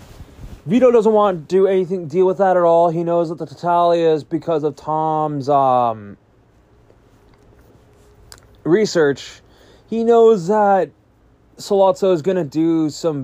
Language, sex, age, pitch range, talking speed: English, male, 20-39, 125-165 Hz, 140 wpm